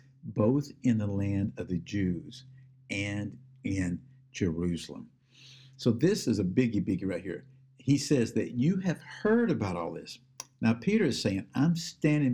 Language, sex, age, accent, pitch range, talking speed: English, male, 60-79, American, 110-135 Hz, 160 wpm